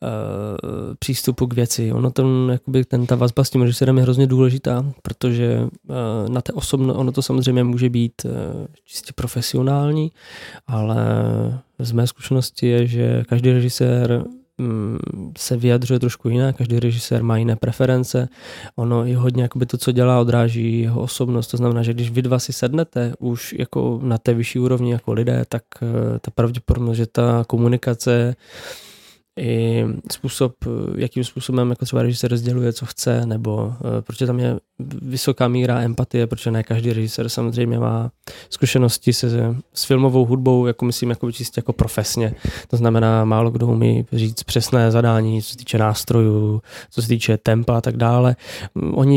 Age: 20-39